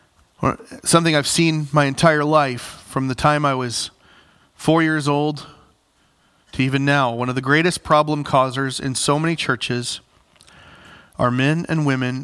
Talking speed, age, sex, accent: 150 wpm, 40-59, male, American